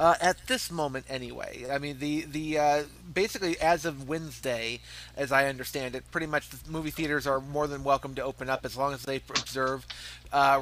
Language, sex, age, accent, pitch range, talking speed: English, male, 30-49, American, 135-155 Hz, 205 wpm